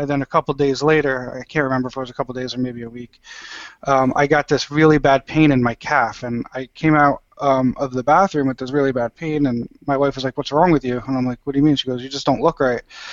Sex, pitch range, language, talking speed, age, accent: male, 125-145 Hz, English, 295 wpm, 20-39, American